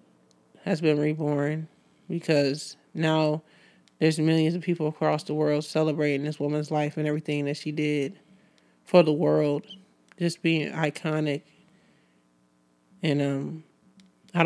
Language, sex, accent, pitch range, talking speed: English, male, American, 145-170 Hz, 125 wpm